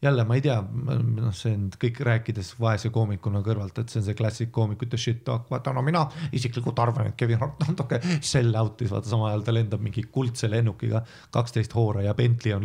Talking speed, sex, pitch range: 220 wpm, male, 105-125 Hz